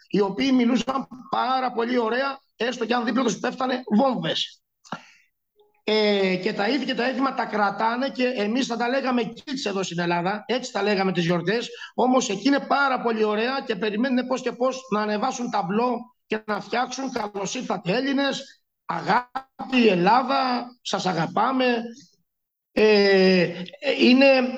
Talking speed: 145 wpm